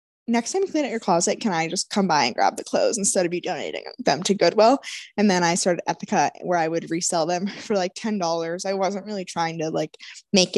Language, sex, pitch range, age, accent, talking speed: English, female, 180-215 Hz, 10-29, American, 245 wpm